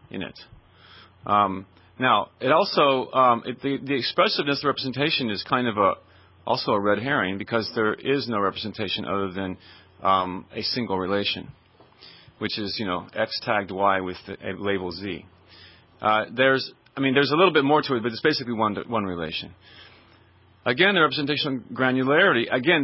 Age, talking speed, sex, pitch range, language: 40-59, 170 wpm, male, 95-130 Hz, English